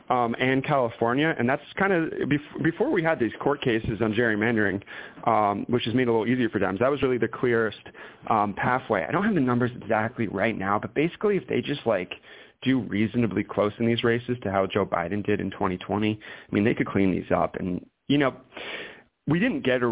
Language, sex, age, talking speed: English, male, 30-49, 215 wpm